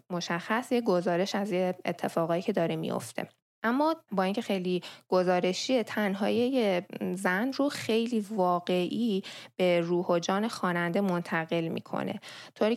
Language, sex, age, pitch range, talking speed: Persian, female, 10-29, 175-215 Hz, 120 wpm